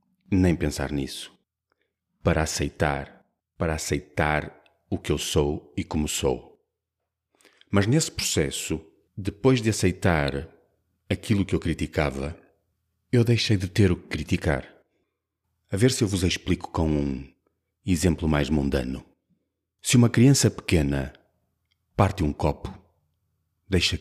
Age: 40-59